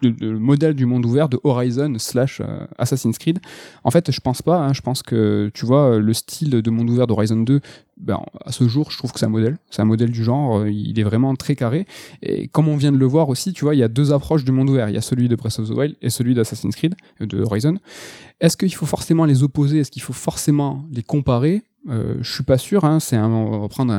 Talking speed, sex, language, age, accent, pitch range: 255 wpm, male, French, 20-39, French, 115-150 Hz